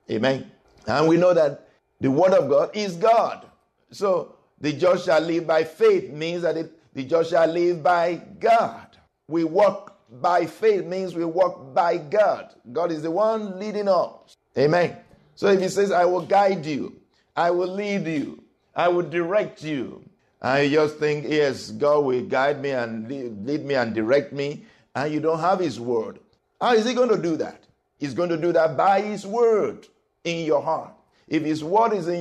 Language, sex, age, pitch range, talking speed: English, male, 50-69, 130-195 Hz, 190 wpm